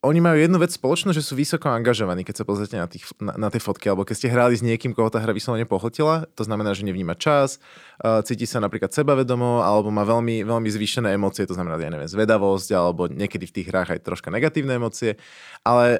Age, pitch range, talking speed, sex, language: 20-39, 110-145 Hz, 210 wpm, male, Slovak